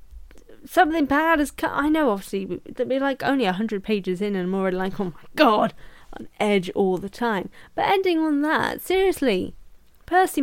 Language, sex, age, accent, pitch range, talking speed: English, female, 10-29, British, 185-290 Hz, 190 wpm